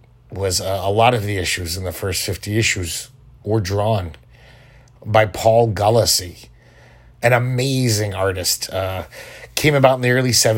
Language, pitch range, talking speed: English, 100-130 Hz, 145 wpm